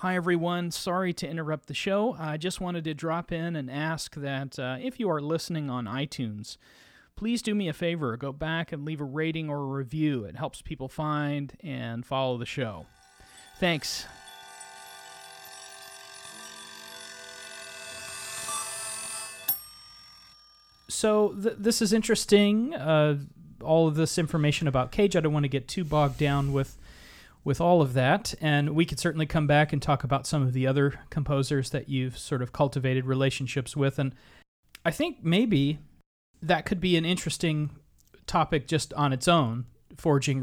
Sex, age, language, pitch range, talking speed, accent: male, 30-49, English, 130-165 Hz, 155 wpm, American